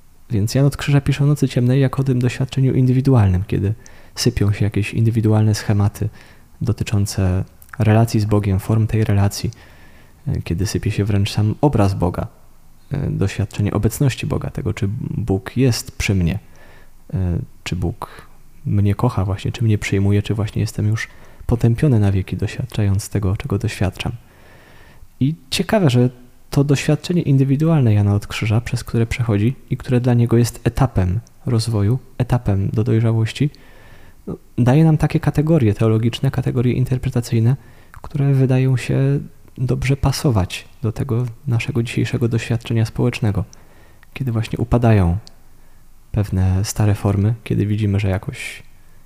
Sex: male